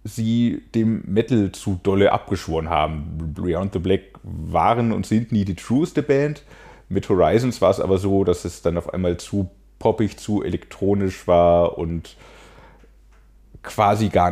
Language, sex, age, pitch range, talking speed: German, male, 30-49, 90-115 Hz, 150 wpm